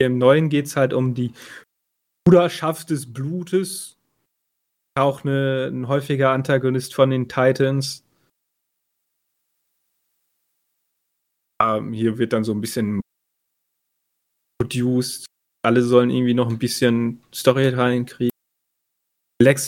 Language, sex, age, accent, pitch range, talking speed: German, male, 30-49, German, 120-145 Hz, 100 wpm